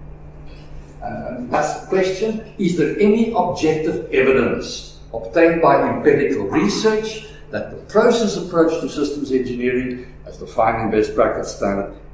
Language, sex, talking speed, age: English, male, 135 wpm, 60-79